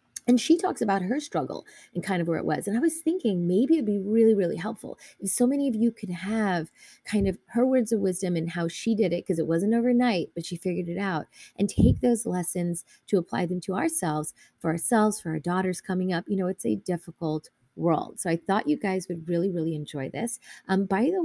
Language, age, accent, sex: English, 30-49, American, female